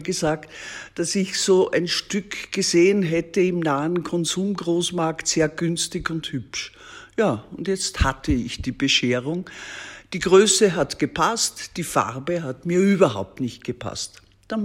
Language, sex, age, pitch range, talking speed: German, male, 60-79, 145-195 Hz, 140 wpm